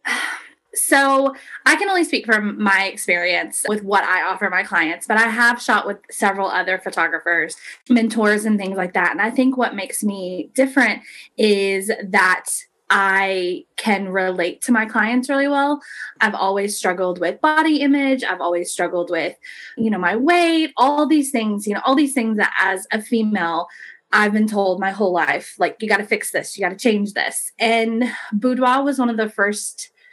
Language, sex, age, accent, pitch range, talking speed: English, female, 20-39, American, 190-265 Hz, 185 wpm